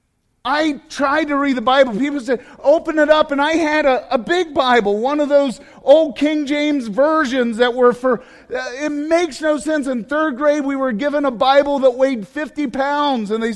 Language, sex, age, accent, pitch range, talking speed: English, male, 40-59, American, 235-300 Hz, 210 wpm